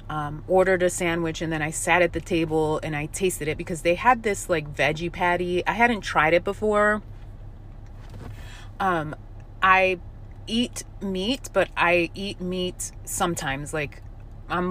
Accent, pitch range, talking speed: American, 135-185 Hz, 155 wpm